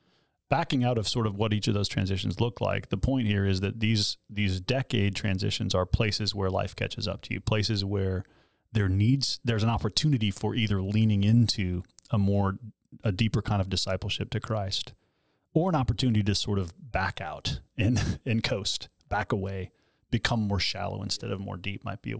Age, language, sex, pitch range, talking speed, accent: 30-49, English, male, 95-110 Hz, 195 wpm, American